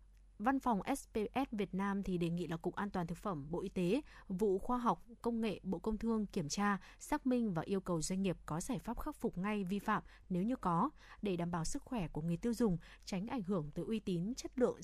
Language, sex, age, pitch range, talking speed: Vietnamese, female, 20-39, 180-230 Hz, 250 wpm